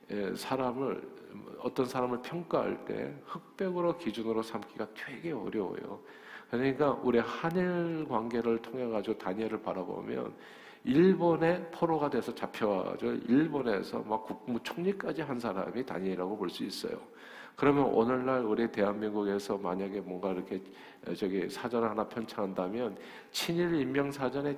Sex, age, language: male, 50-69, Korean